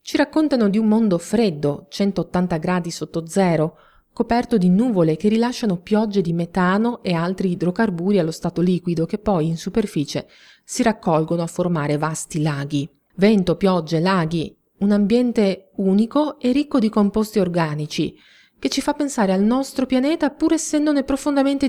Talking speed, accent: 150 wpm, native